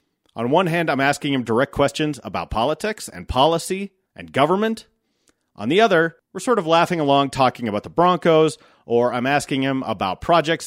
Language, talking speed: English, 180 wpm